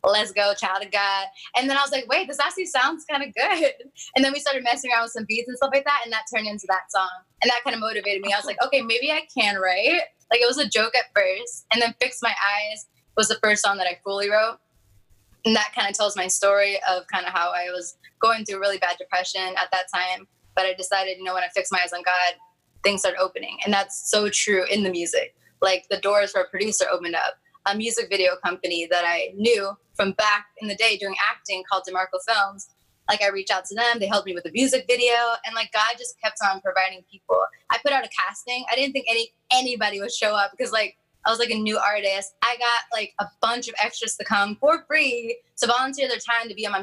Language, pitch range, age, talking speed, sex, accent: Spanish, 195-245 Hz, 10-29, 255 wpm, female, American